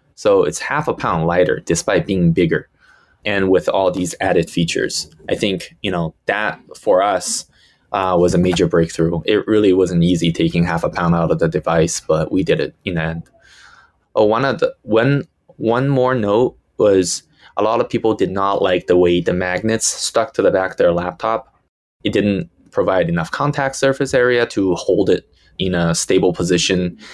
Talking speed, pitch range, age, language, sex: 190 wpm, 85-110 Hz, 20-39, English, male